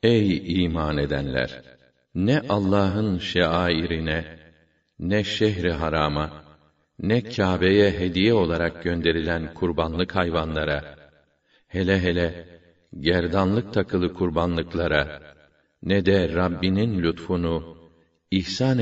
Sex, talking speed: male, 85 wpm